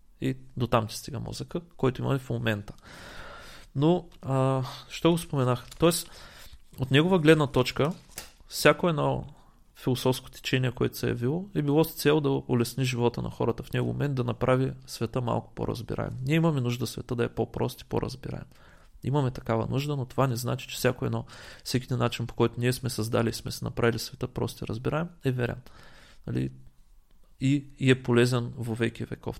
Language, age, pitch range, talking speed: Bulgarian, 30-49, 115-135 Hz, 180 wpm